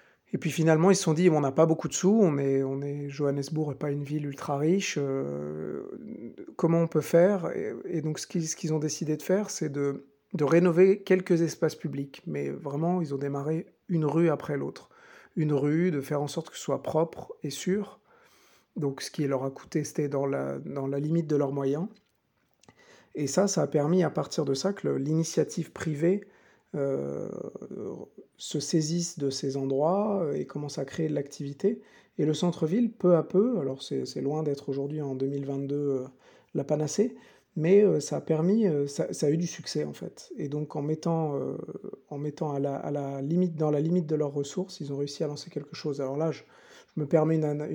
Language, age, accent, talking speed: French, 50-69, French, 215 wpm